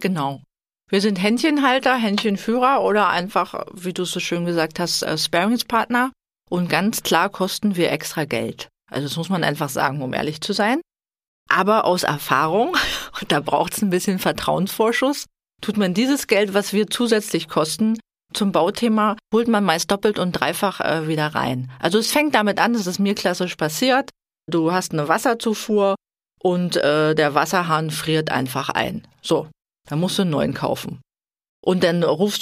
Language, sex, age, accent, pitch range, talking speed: German, female, 40-59, German, 160-220 Hz, 165 wpm